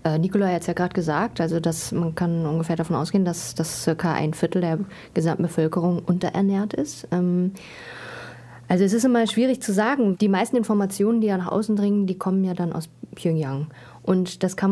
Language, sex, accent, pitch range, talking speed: German, female, German, 160-190 Hz, 195 wpm